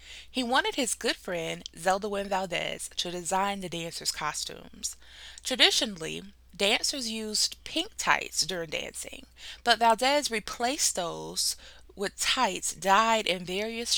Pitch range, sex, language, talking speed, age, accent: 165-225 Hz, female, English, 125 wpm, 20-39, American